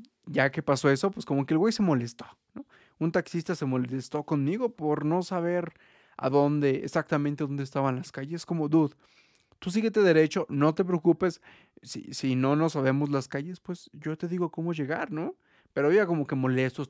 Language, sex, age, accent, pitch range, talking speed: Spanish, male, 30-49, Mexican, 140-170 Hz, 190 wpm